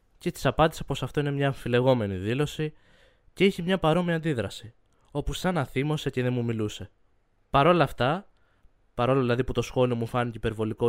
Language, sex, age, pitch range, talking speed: Greek, male, 20-39, 120-165 Hz, 180 wpm